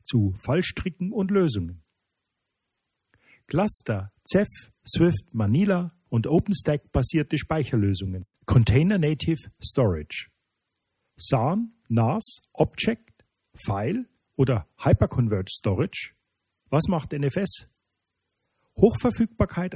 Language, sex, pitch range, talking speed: German, male, 110-160 Hz, 75 wpm